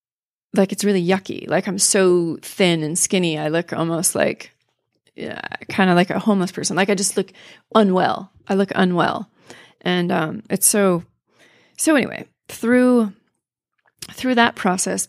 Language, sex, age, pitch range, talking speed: English, female, 30-49, 180-200 Hz, 155 wpm